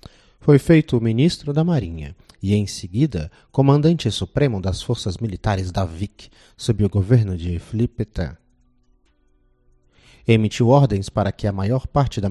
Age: 30-49